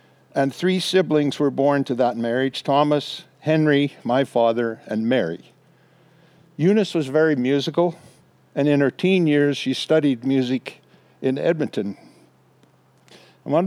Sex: male